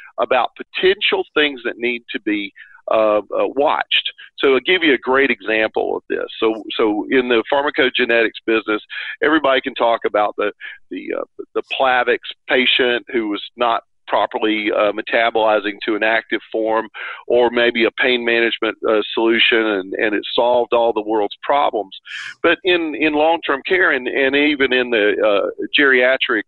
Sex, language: male, English